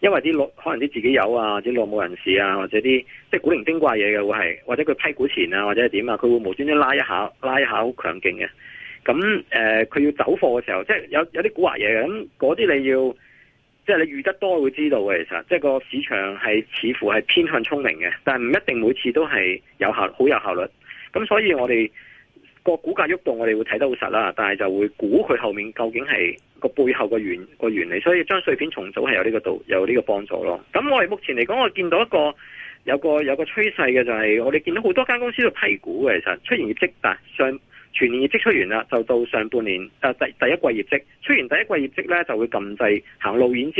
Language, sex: Chinese, male